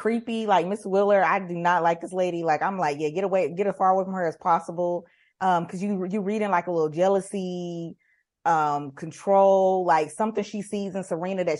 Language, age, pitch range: English, 20-39, 175-220 Hz